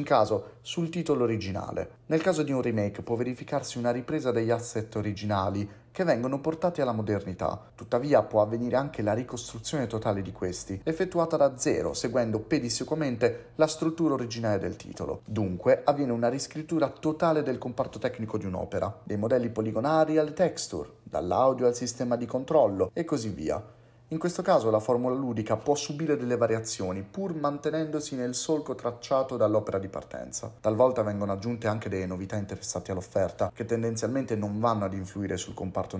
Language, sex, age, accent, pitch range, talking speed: Italian, male, 30-49, native, 105-130 Hz, 160 wpm